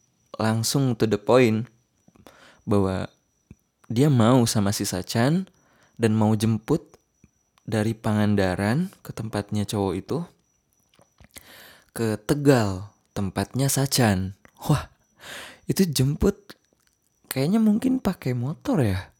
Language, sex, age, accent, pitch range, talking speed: Indonesian, male, 20-39, native, 100-130 Hz, 95 wpm